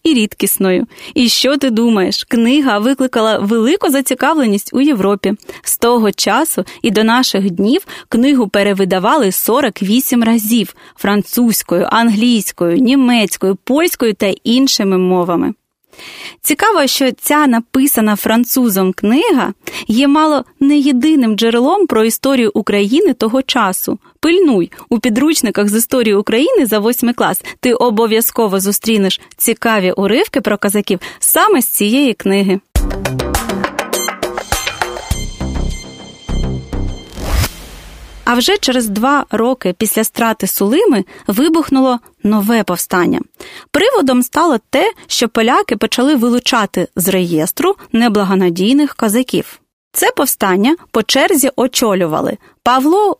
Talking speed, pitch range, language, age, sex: 105 wpm, 200-270 Hz, Ukrainian, 30-49, female